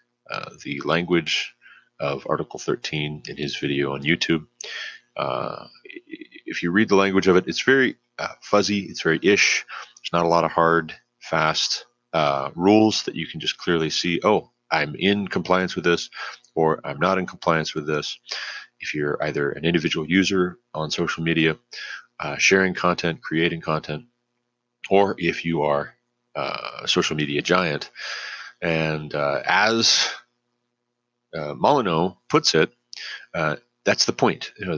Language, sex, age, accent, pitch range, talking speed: English, male, 30-49, American, 80-120 Hz, 155 wpm